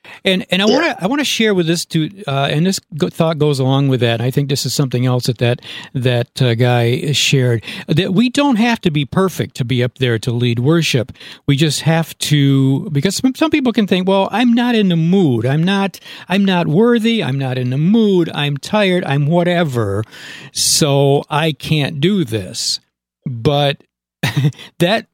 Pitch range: 130-175 Hz